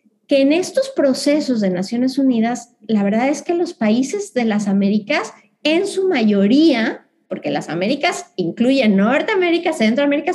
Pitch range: 215-290 Hz